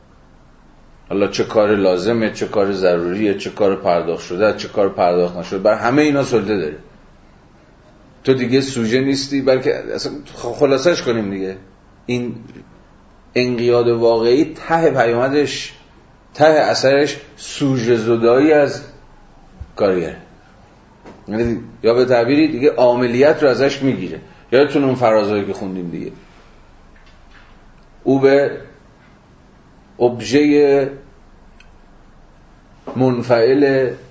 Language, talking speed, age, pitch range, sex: Persian, 105 wpm, 40-59, 100-135 Hz, male